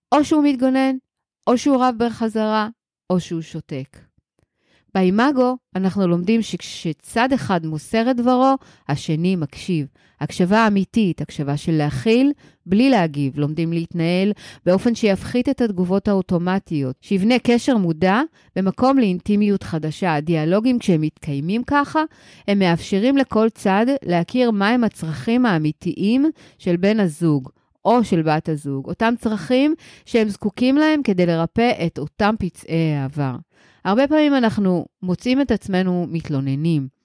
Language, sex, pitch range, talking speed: Hebrew, female, 160-235 Hz, 125 wpm